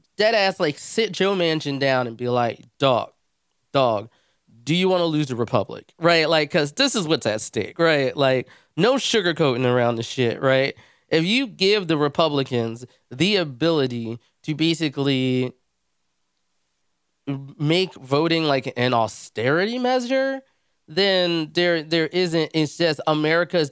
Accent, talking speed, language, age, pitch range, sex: American, 140 wpm, English, 20-39, 125-160 Hz, male